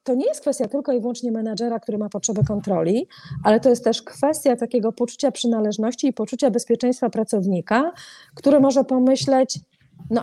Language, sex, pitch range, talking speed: Polish, female, 220-270 Hz, 165 wpm